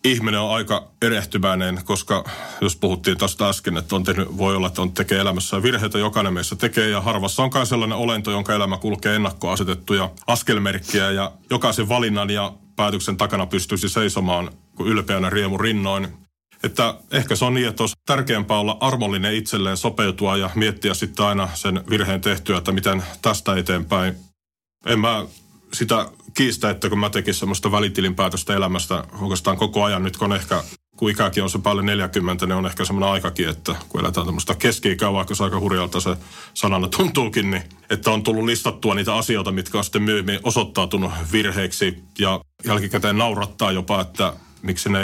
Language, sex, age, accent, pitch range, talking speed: Finnish, male, 30-49, native, 95-105 Hz, 170 wpm